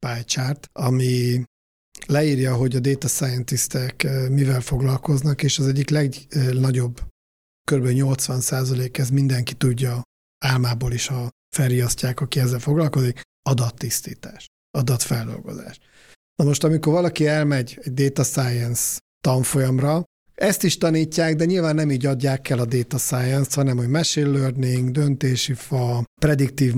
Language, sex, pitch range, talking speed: Hungarian, male, 125-150 Hz, 120 wpm